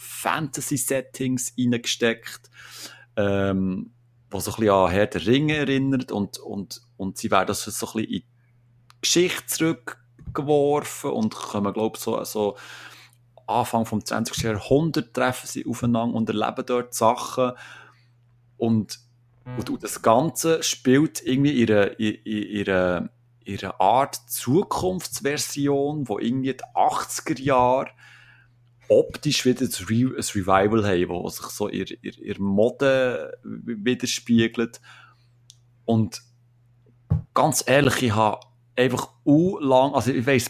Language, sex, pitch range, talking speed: German, male, 110-130 Hz, 120 wpm